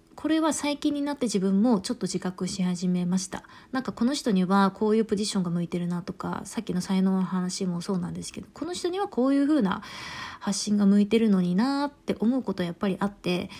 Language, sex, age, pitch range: Japanese, female, 20-39, 185-235 Hz